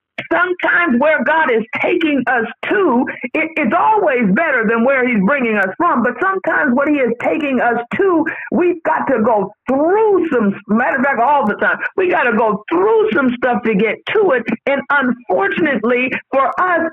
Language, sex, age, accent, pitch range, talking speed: English, female, 50-69, American, 240-315 Hz, 185 wpm